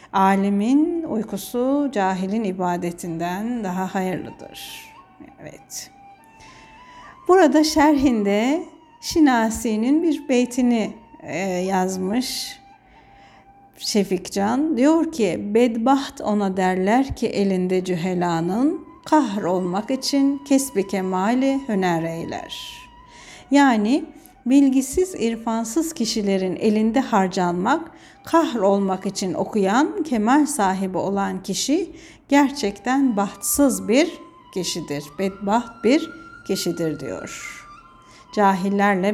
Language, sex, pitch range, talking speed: Turkish, female, 195-275 Hz, 75 wpm